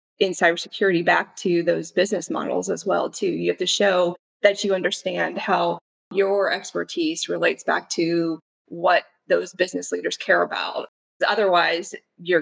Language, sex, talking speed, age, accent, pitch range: English, female, 150 wpm, 20-39, American, 165-200 Hz